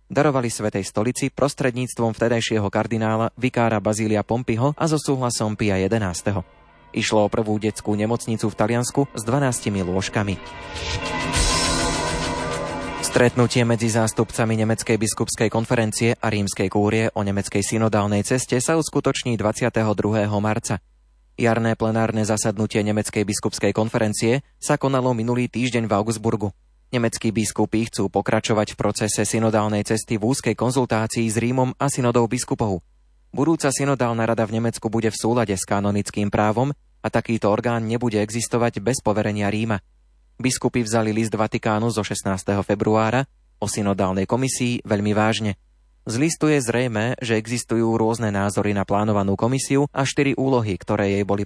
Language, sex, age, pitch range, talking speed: Slovak, male, 20-39, 105-120 Hz, 135 wpm